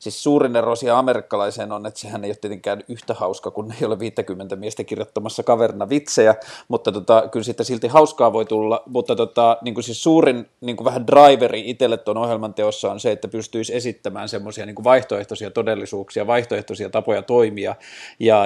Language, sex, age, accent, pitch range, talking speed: Finnish, male, 30-49, native, 105-130 Hz, 165 wpm